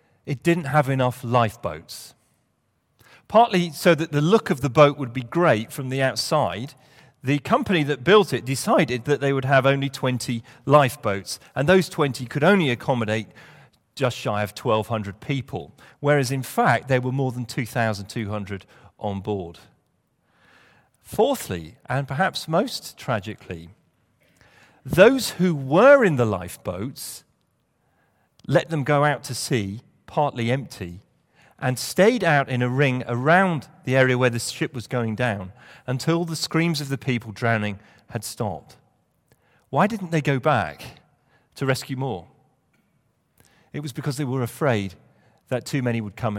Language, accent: English, British